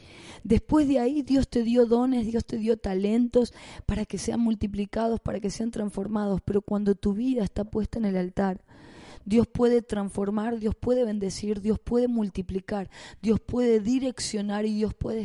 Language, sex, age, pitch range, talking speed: Spanish, female, 20-39, 210-245 Hz, 170 wpm